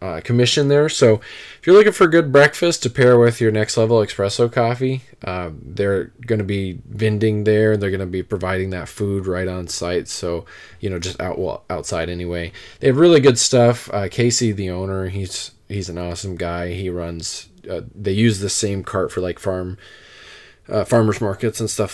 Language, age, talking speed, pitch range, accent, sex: English, 20-39, 200 wpm, 90-115 Hz, American, male